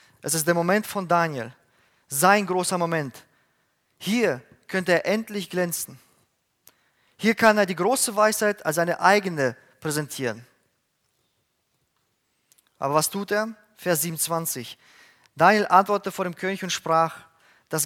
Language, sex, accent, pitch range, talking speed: German, male, German, 155-195 Hz, 130 wpm